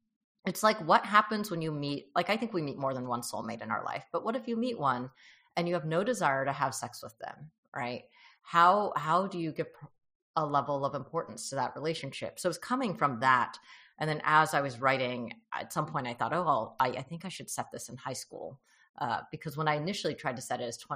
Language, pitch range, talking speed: English, 135-185 Hz, 245 wpm